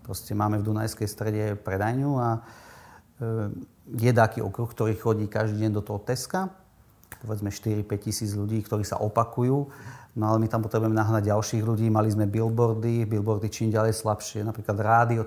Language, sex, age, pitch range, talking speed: Slovak, male, 40-59, 105-115 Hz, 160 wpm